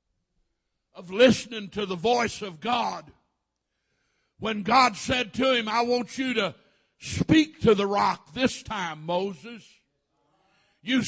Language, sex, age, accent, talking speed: English, male, 60-79, American, 130 wpm